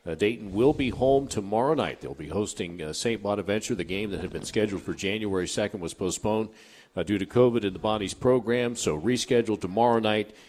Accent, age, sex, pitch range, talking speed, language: American, 50-69, male, 90-115 Hz, 205 wpm, English